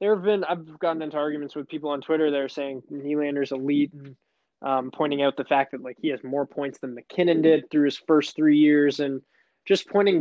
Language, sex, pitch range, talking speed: English, male, 135-165 Hz, 225 wpm